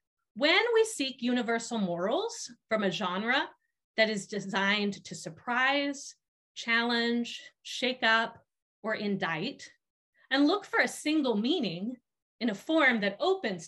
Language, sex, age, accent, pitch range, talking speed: English, female, 30-49, American, 190-255 Hz, 125 wpm